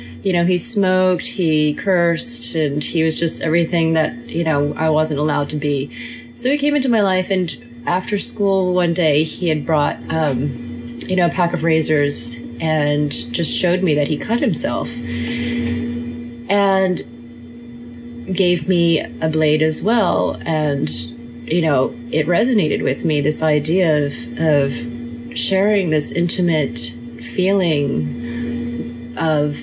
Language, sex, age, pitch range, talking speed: English, female, 30-49, 120-170 Hz, 145 wpm